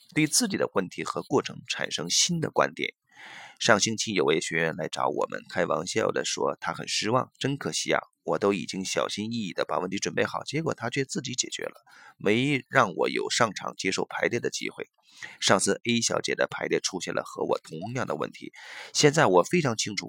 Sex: male